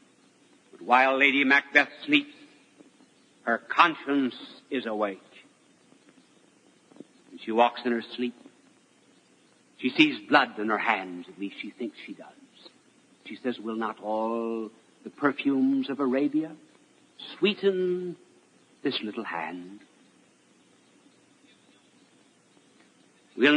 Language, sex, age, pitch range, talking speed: English, male, 60-79, 135-220 Hz, 100 wpm